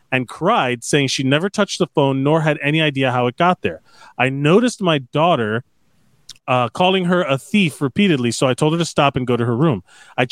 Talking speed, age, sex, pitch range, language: 220 wpm, 30-49, male, 125-165 Hz, English